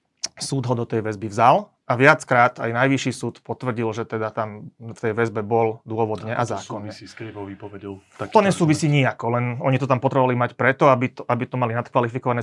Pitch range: 115-130 Hz